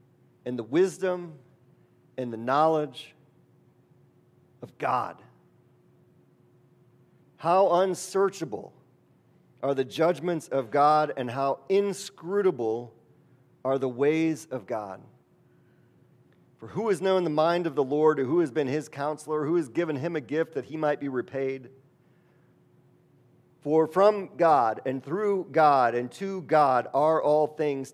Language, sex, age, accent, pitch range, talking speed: English, male, 40-59, American, 130-170 Hz, 130 wpm